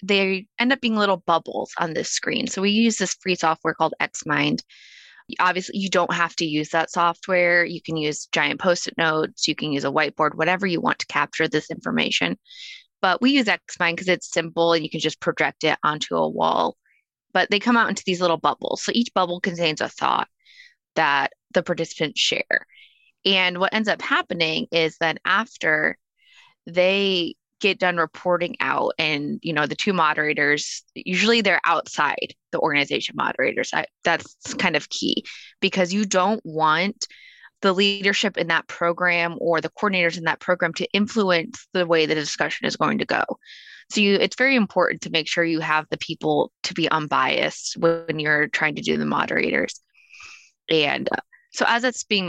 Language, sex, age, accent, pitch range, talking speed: English, female, 20-39, American, 160-200 Hz, 180 wpm